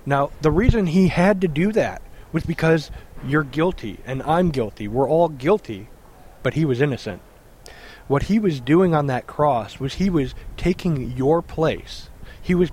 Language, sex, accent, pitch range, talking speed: English, male, American, 125-160 Hz, 175 wpm